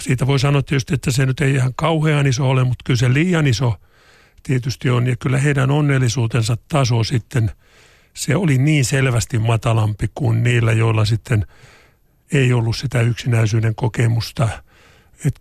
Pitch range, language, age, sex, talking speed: 120-140 Hz, Finnish, 50-69, male, 155 wpm